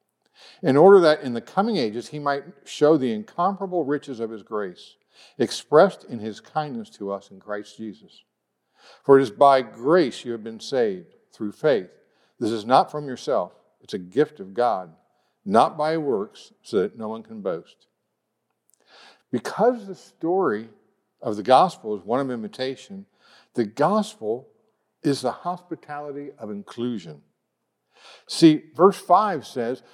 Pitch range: 130-210 Hz